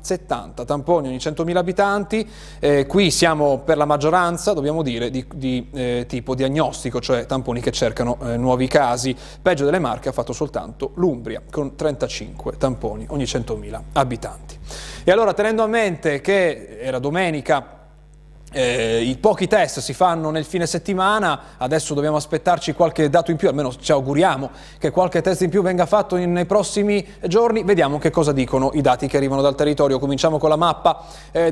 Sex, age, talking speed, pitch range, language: male, 30-49, 170 wpm, 130-165 Hz, Italian